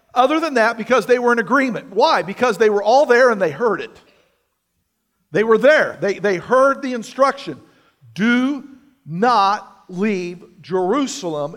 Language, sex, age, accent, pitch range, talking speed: English, male, 50-69, American, 185-260 Hz, 155 wpm